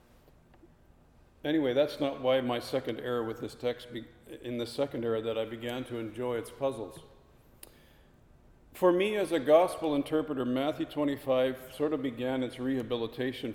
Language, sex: English, male